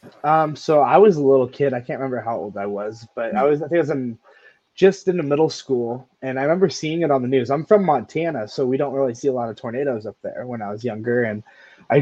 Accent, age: American, 20-39